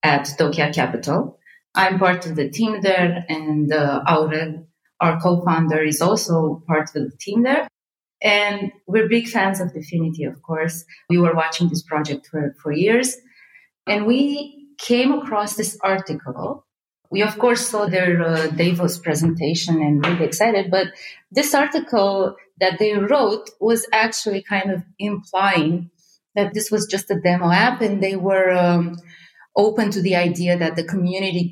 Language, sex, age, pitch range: English, female, 30-49, 160-200 Hz